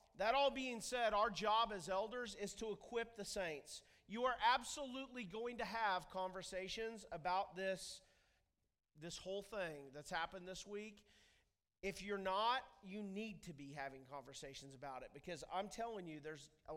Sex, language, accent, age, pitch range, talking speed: male, English, American, 40-59, 180-255 Hz, 165 wpm